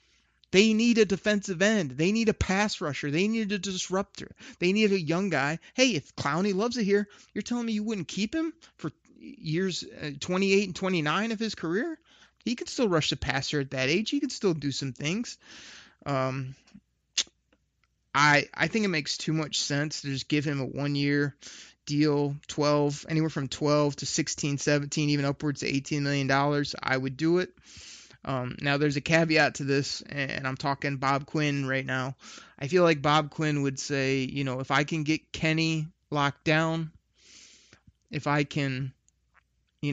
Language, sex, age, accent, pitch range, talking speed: English, male, 30-49, American, 140-175 Hz, 180 wpm